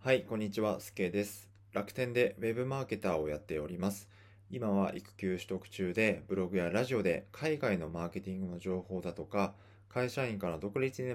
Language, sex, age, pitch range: Japanese, male, 20-39, 90-100 Hz